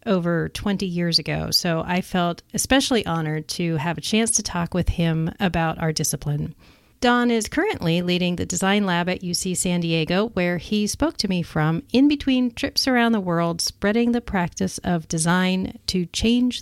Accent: American